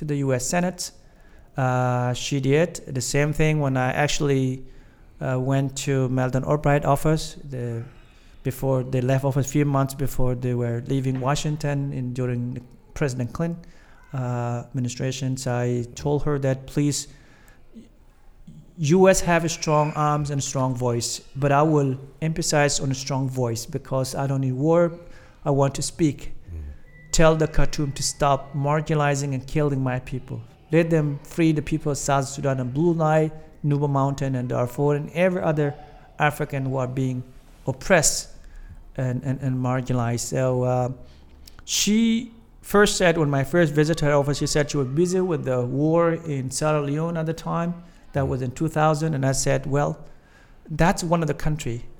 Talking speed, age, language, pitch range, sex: 170 wpm, 50-69, English, 130-155 Hz, male